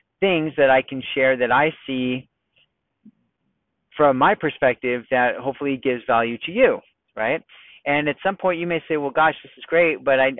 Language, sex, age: English, male, 30-49